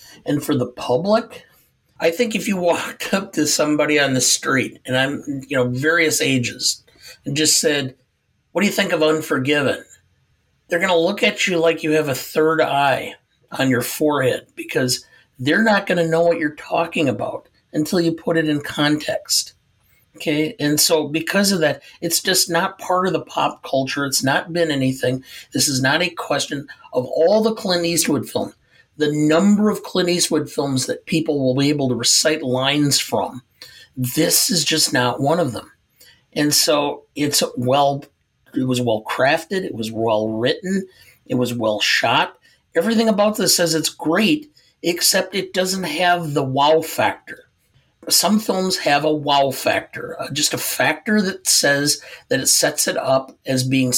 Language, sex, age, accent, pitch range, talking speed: English, male, 50-69, American, 135-175 Hz, 175 wpm